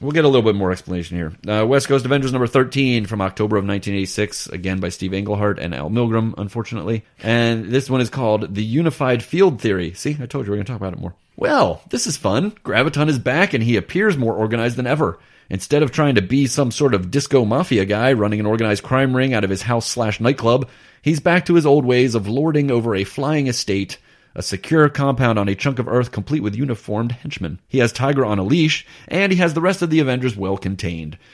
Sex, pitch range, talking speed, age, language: male, 100-140 Hz, 235 wpm, 30-49, English